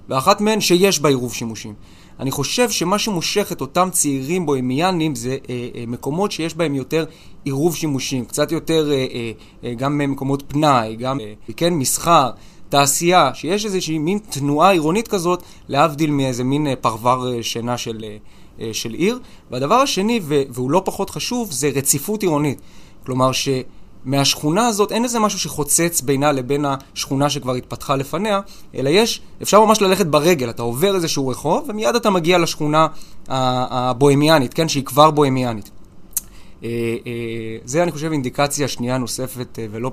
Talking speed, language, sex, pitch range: 155 wpm, Hebrew, male, 125-175 Hz